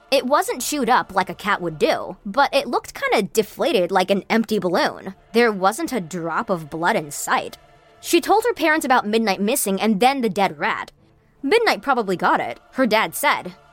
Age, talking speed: 20-39, 195 wpm